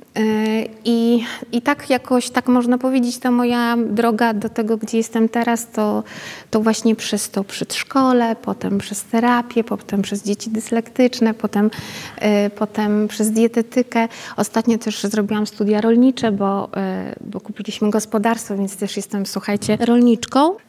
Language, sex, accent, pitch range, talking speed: Polish, female, native, 210-245 Hz, 140 wpm